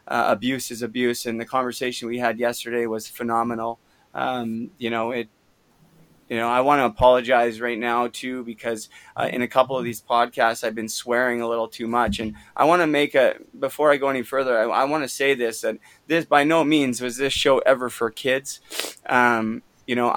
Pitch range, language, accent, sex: 115-130 Hz, English, American, male